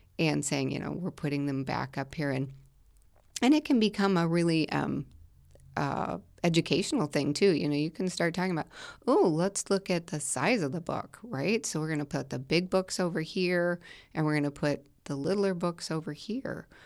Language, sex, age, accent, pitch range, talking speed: English, female, 30-49, American, 145-185 Hz, 210 wpm